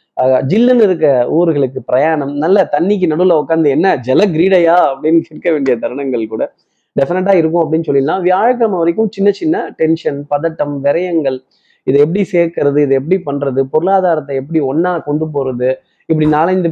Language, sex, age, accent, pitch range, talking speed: Tamil, male, 20-39, native, 140-185 Hz, 145 wpm